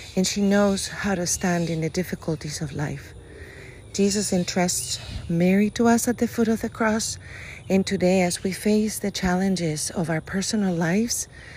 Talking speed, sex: 170 wpm, female